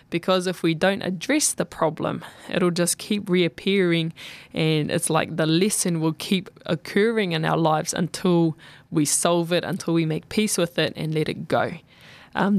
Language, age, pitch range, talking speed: English, 20-39, 165-195 Hz, 175 wpm